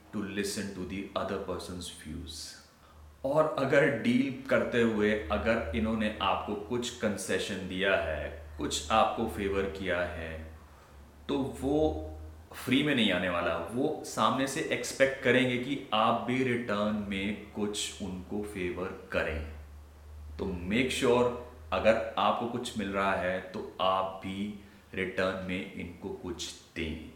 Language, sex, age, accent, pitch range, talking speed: English, male, 30-49, Indian, 95-120 Hz, 110 wpm